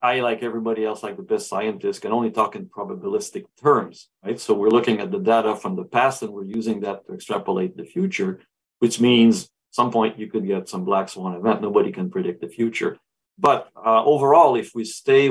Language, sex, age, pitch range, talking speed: English, male, 50-69, 105-135 Hz, 215 wpm